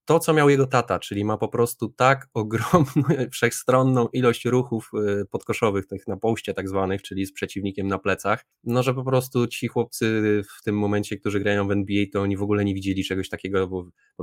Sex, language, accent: male, Polish, native